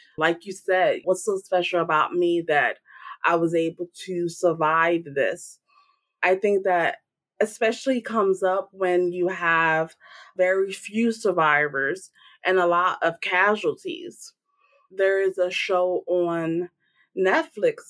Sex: female